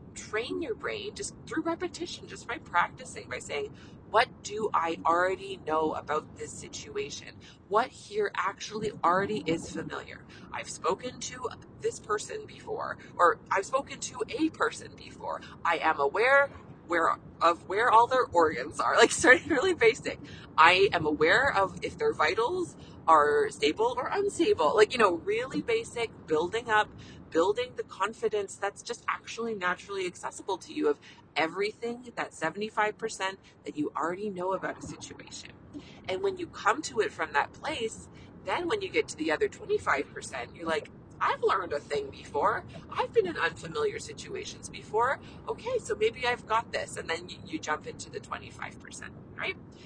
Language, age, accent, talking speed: English, 30-49, American, 165 wpm